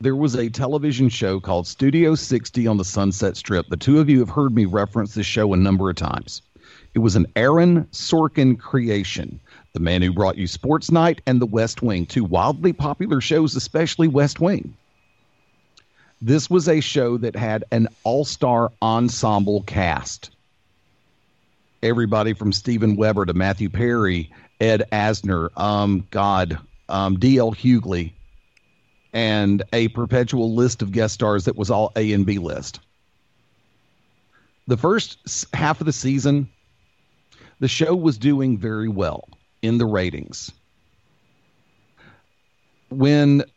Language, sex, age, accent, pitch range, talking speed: English, male, 50-69, American, 105-145 Hz, 145 wpm